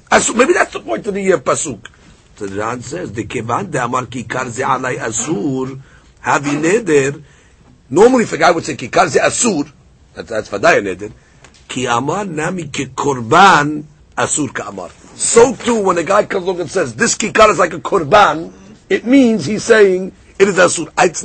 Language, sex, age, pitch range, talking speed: English, male, 50-69, 140-205 Hz, 160 wpm